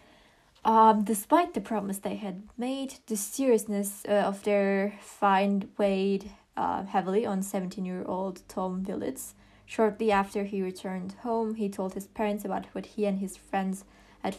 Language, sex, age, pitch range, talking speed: English, female, 20-39, 195-220 Hz, 150 wpm